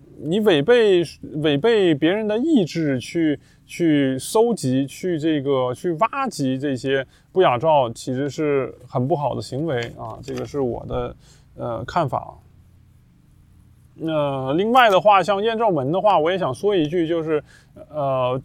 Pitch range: 130-190 Hz